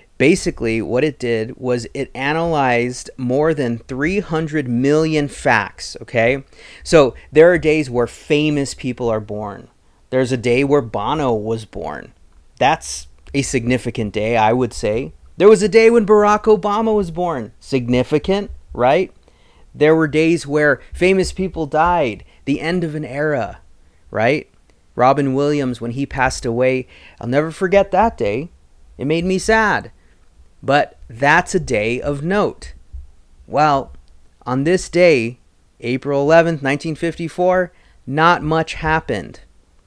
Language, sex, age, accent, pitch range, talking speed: English, male, 30-49, American, 115-160 Hz, 135 wpm